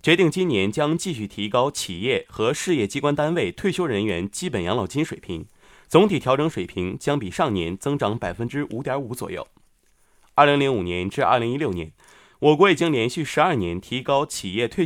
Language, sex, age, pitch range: Chinese, male, 20-39, 95-160 Hz